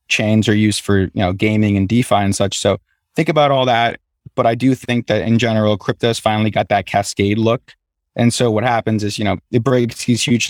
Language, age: English, 30-49